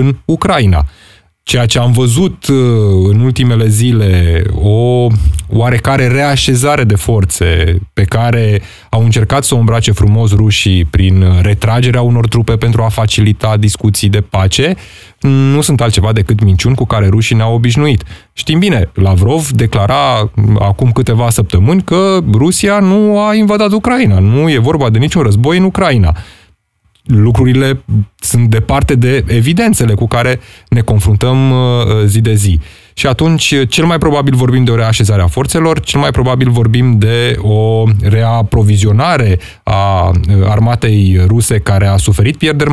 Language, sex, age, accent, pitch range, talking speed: Romanian, male, 20-39, native, 105-130 Hz, 140 wpm